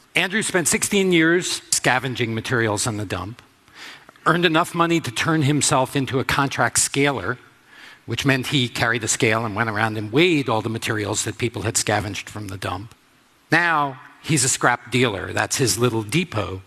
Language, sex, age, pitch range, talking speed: English, male, 50-69, 110-155 Hz, 175 wpm